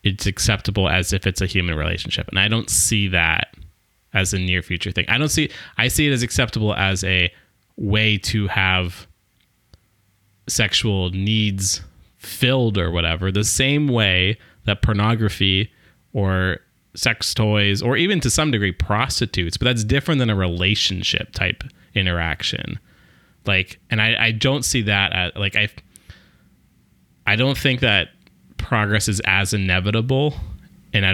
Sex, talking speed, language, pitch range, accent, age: male, 150 wpm, English, 95-110 Hz, American, 20-39